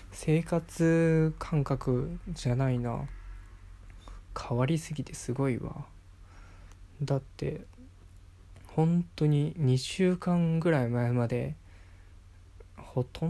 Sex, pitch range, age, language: male, 90-140 Hz, 20-39, Japanese